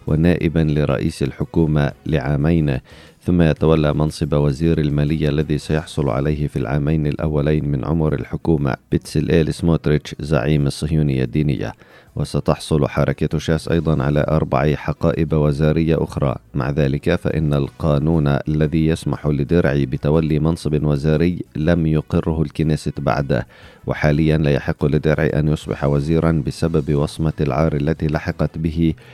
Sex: male